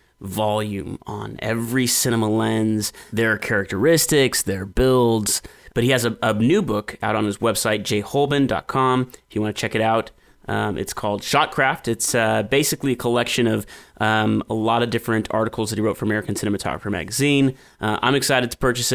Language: English